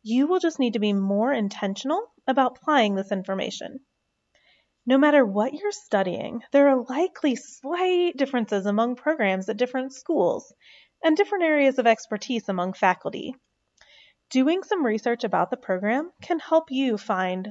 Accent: American